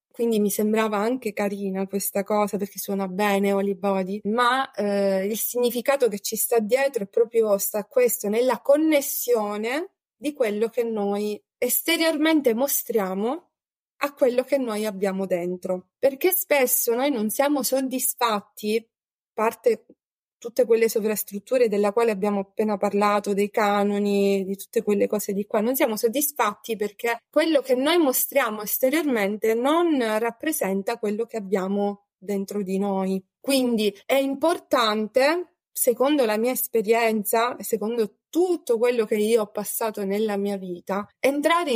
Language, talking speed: Italian, 140 wpm